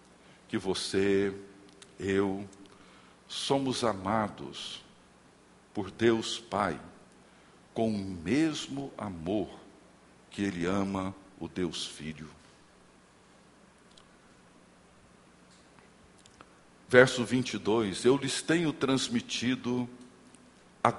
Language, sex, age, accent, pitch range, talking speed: Portuguese, male, 60-79, Brazilian, 90-140 Hz, 70 wpm